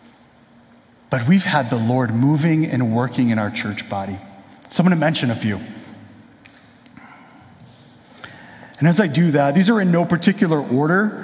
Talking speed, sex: 155 wpm, male